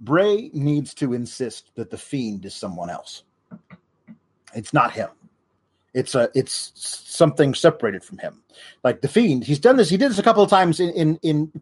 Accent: American